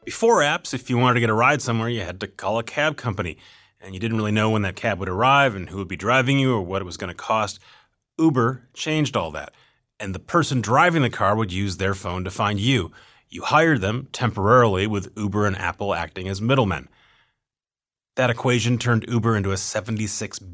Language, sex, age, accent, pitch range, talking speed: English, male, 30-49, American, 95-130 Hz, 220 wpm